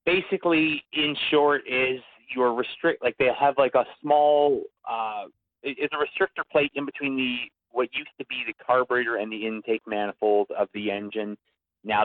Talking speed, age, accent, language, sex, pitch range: 170 wpm, 30-49, American, English, male, 100-120 Hz